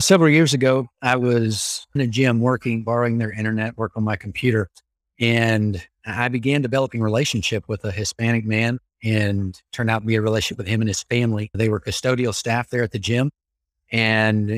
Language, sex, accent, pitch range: English, male, American, 110-135 Hz